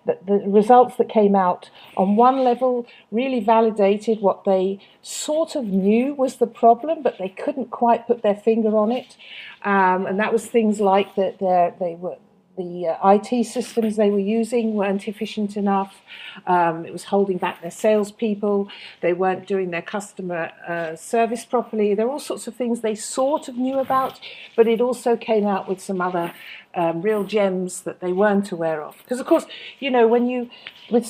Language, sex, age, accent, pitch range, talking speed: English, female, 50-69, British, 190-235 Hz, 185 wpm